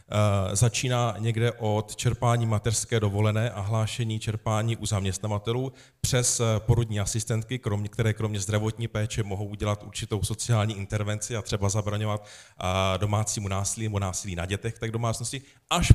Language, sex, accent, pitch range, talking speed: Czech, male, native, 105-120 Hz, 140 wpm